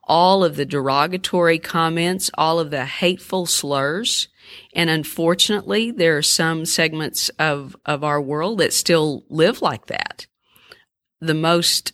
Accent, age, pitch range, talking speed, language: American, 50-69, 145-175 Hz, 135 wpm, English